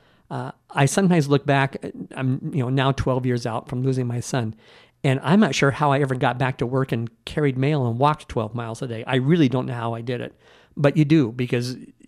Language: English